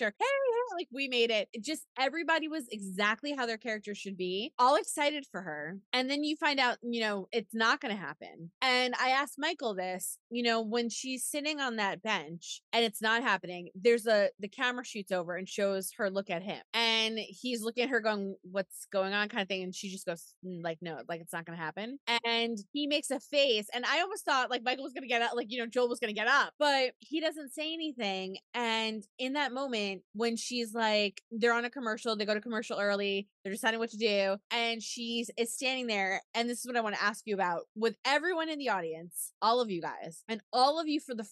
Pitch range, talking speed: 200-255 Hz, 240 wpm